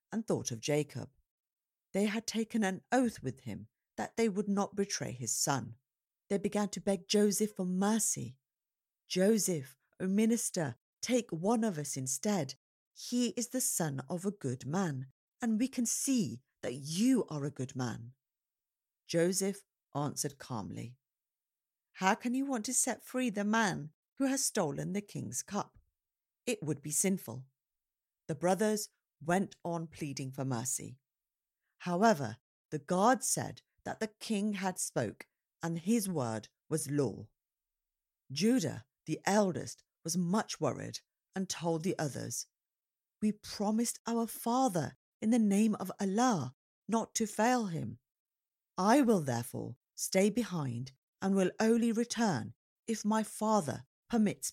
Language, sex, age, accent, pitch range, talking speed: English, female, 50-69, British, 140-220 Hz, 145 wpm